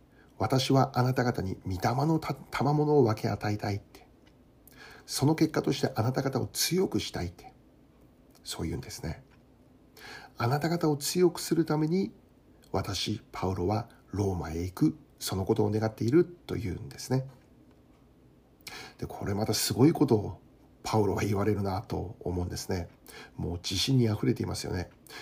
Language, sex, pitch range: Japanese, male, 95-135 Hz